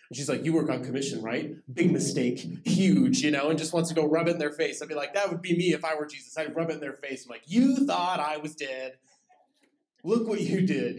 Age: 30-49